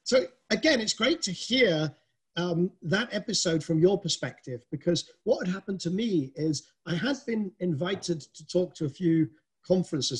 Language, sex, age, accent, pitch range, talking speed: English, male, 40-59, British, 145-185 Hz, 170 wpm